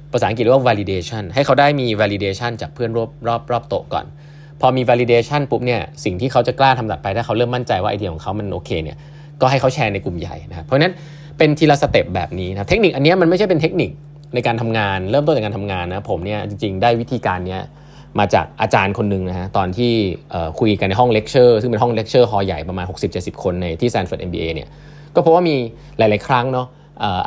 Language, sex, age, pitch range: Thai, male, 20-39, 100-140 Hz